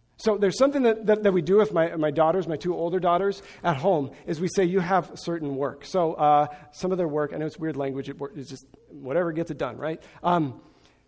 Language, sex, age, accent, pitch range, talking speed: English, male, 40-59, American, 150-205 Hz, 240 wpm